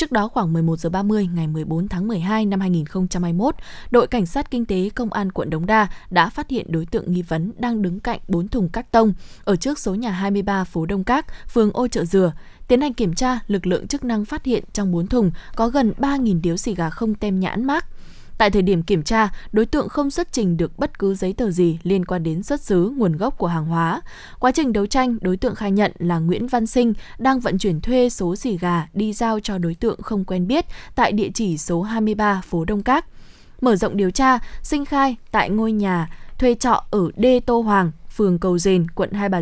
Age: 20-39